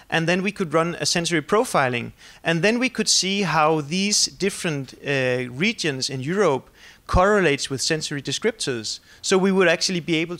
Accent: Danish